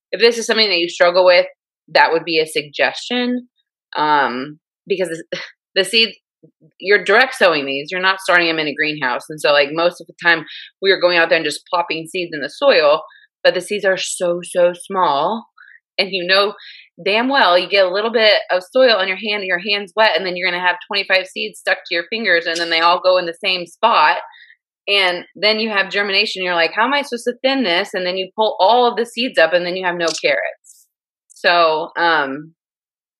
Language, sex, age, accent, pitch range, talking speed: English, female, 20-39, American, 165-215 Hz, 230 wpm